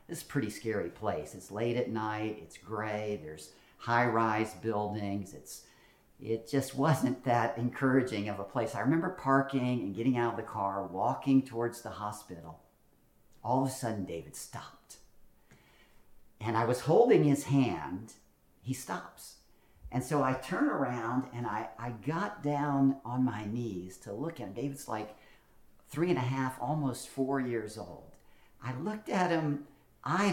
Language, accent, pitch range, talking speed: English, American, 105-145 Hz, 165 wpm